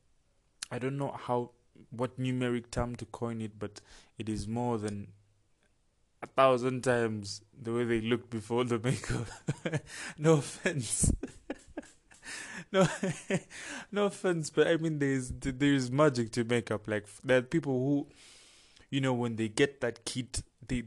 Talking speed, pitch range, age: 145 wpm, 105-125 Hz, 20-39